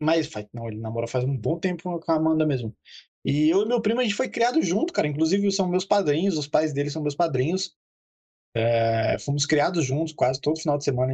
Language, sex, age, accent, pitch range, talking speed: Portuguese, male, 20-39, Brazilian, 115-155 Hz, 225 wpm